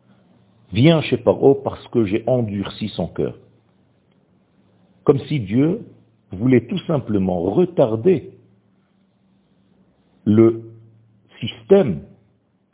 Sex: male